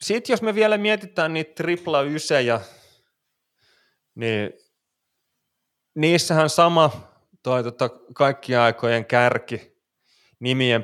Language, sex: Finnish, male